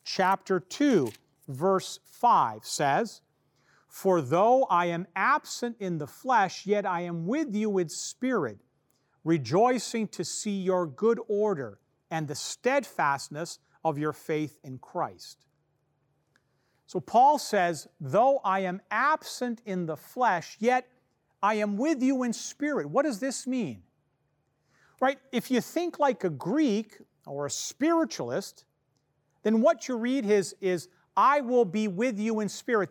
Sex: male